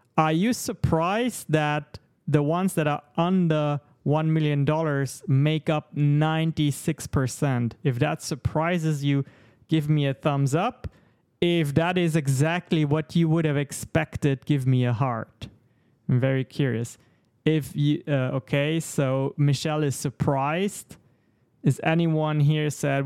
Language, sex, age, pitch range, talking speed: English, male, 30-49, 125-155 Hz, 140 wpm